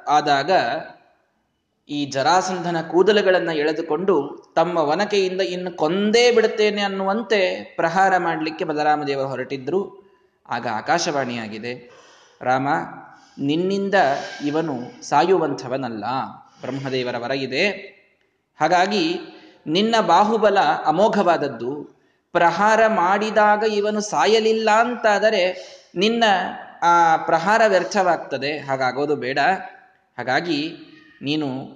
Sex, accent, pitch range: male, native, 145-205 Hz